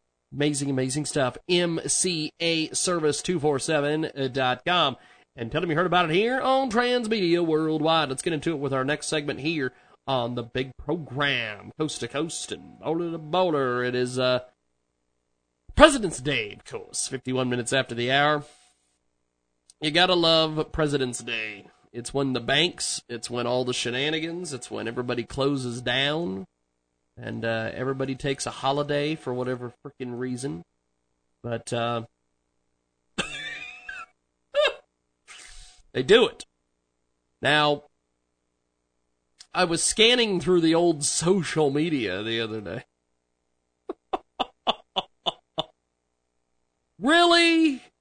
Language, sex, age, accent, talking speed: English, male, 30-49, American, 120 wpm